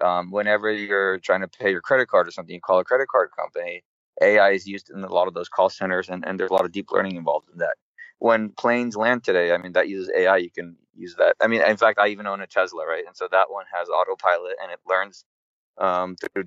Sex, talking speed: male, 260 wpm